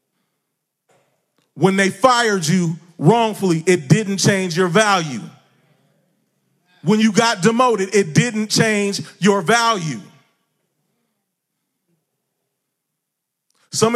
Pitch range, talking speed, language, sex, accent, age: 150-200 Hz, 85 wpm, English, male, American, 30-49